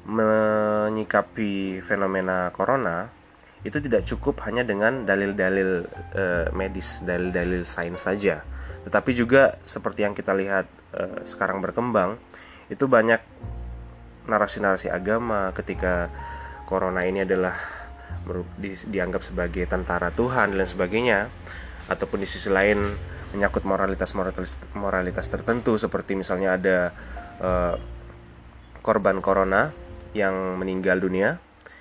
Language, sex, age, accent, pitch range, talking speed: Indonesian, male, 20-39, native, 85-100 Hz, 100 wpm